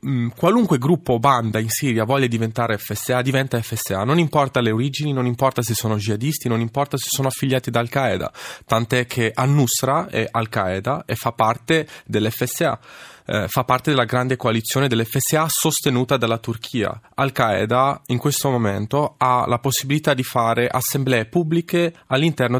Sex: male